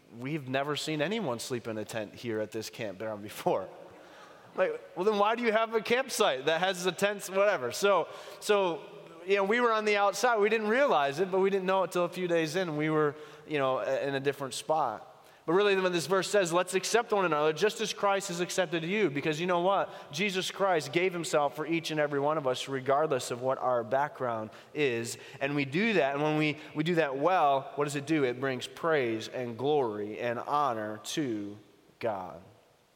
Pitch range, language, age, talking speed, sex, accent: 130-175 Hz, English, 30-49, 215 wpm, male, American